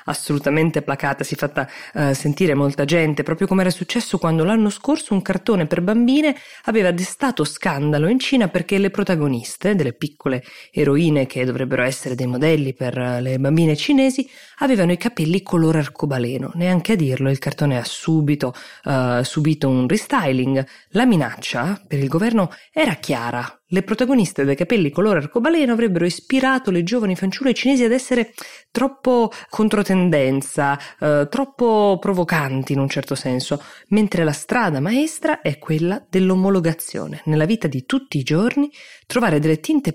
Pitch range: 140-200 Hz